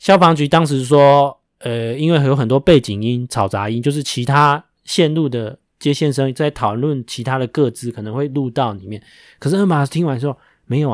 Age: 20-39